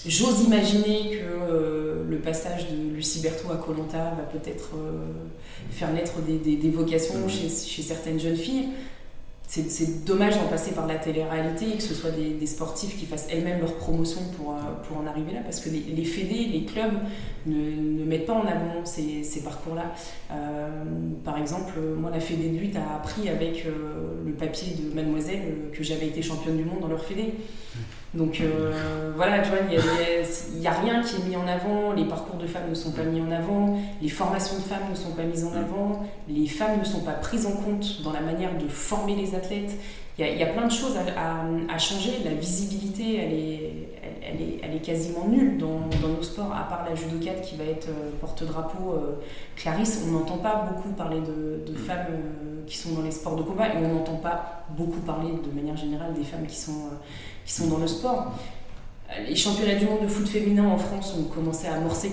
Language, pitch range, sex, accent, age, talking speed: French, 155-195 Hz, female, French, 20-39, 215 wpm